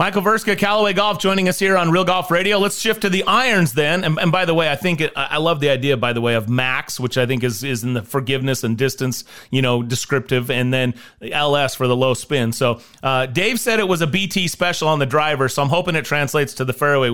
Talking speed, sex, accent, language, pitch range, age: 265 wpm, male, American, English, 135-195 Hz, 30-49